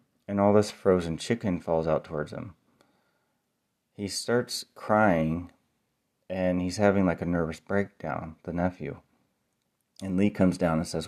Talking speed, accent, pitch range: 145 wpm, American, 85-100 Hz